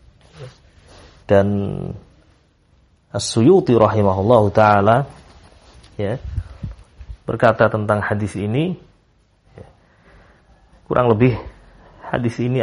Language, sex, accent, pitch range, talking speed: Indonesian, male, native, 100-115 Hz, 55 wpm